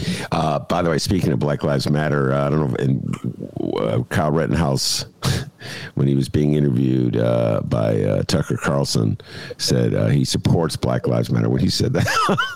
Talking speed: 185 wpm